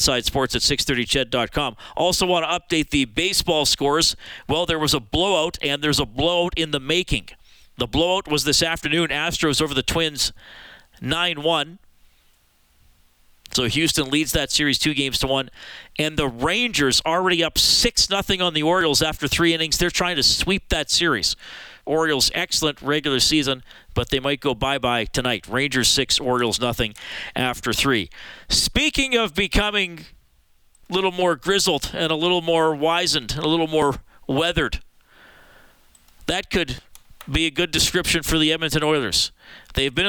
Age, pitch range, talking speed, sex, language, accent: 40-59, 135-175 Hz, 160 wpm, male, English, American